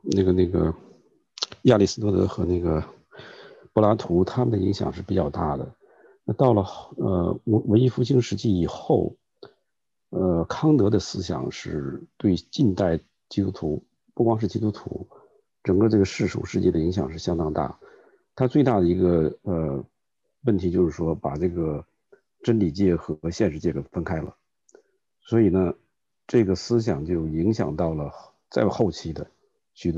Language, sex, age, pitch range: English, male, 50-69, 85-115 Hz